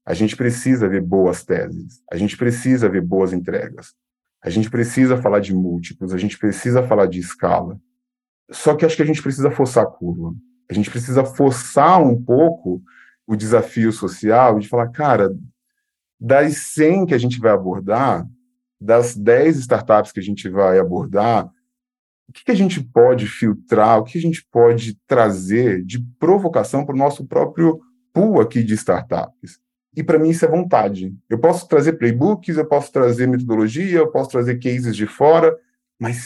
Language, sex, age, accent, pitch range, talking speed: Portuguese, male, 20-39, Brazilian, 110-155 Hz, 170 wpm